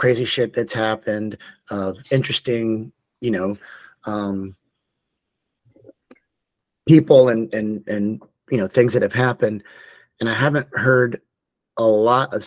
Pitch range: 100-120 Hz